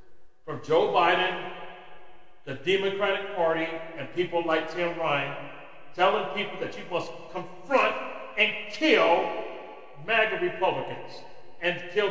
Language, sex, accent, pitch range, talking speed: English, male, American, 160-195 Hz, 115 wpm